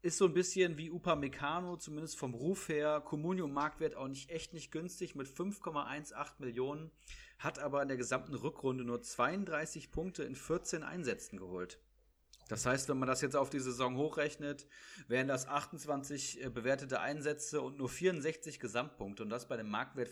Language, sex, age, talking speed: German, male, 30-49, 170 wpm